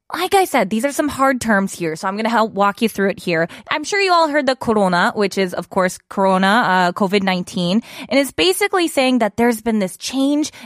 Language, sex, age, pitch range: Korean, female, 20-39, 185-265 Hz